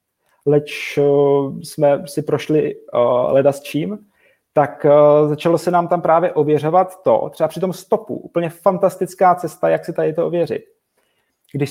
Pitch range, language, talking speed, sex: 145-170 Hz, Czech, 160 wpm, male